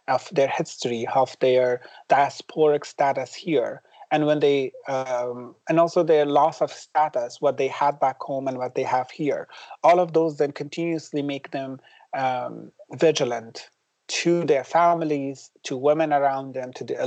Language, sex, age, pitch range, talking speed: English, male, 30-49, 130-155 Hz, 160 wpm